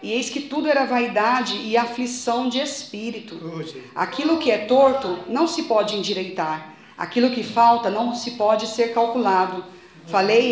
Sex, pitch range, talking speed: female, 210-250 Hz, 155 wpm